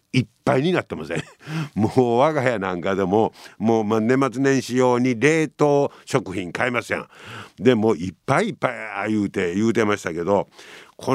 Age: 60-79